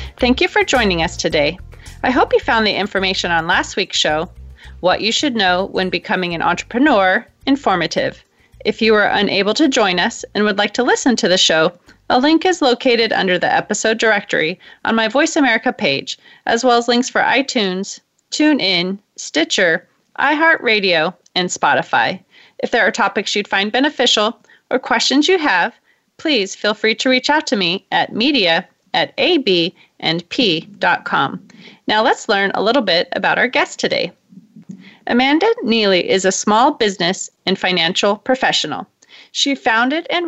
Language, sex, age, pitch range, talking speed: English, female, 30-49, 190-275 Hz, 165 wpm